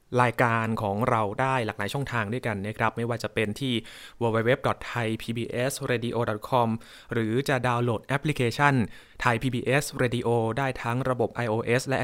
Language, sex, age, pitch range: Thai, male, 20-39, 110-130 Hz